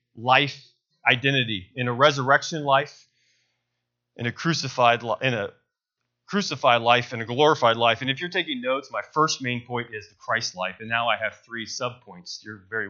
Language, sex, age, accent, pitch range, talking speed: English, male, 30-49, American, 115-155 Hz, 185 wpm